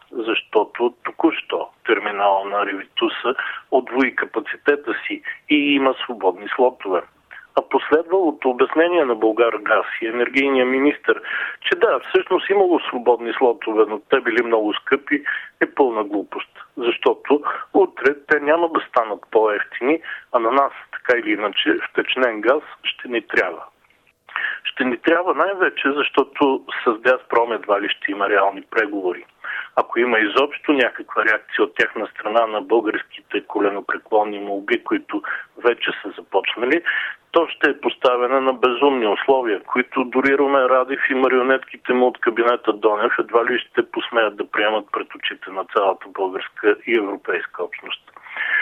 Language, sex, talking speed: Bulgarian, male, 140 wpm